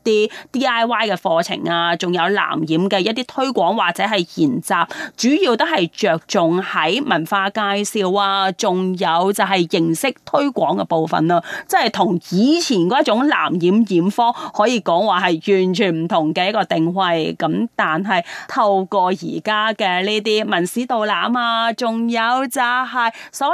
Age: 30-49